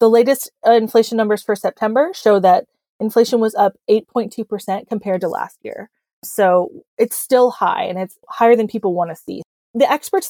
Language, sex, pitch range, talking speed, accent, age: English, female, 195-235 Hz, 175 wpm, American, 20-39